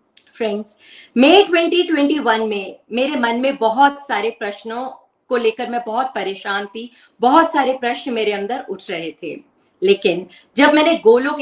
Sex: female